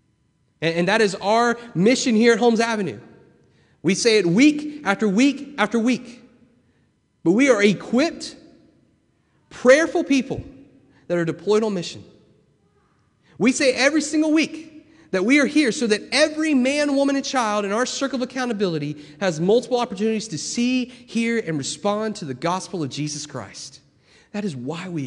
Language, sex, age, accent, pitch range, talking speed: English, male, 30-49, American, 140-235 Hz, 160 wpm